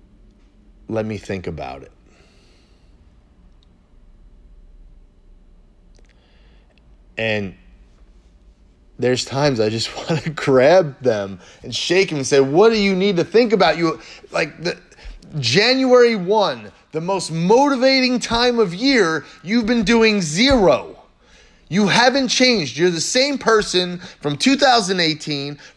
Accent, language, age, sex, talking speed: American, English, 30-49, male, 115 wpm